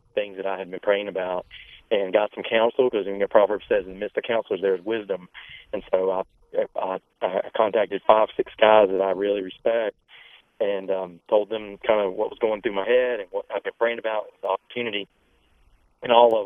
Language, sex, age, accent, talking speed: English, male, 30-49, American, 220 wpm